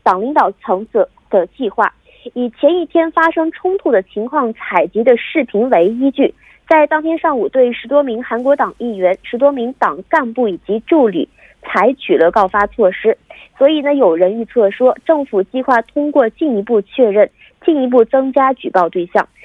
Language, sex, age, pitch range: Korean, female, 30-49, 220-305 Hz